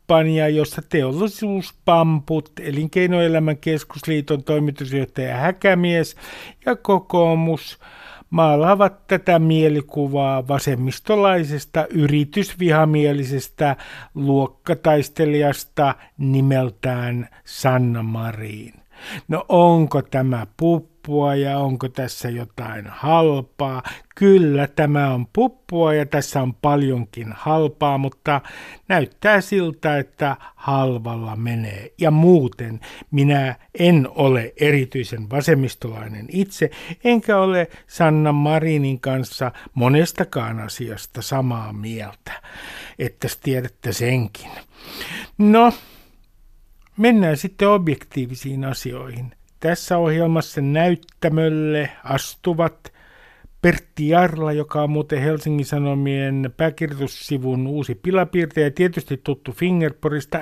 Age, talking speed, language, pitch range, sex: 60-79, 80 wpm, Finnish, 130-165 Hz, male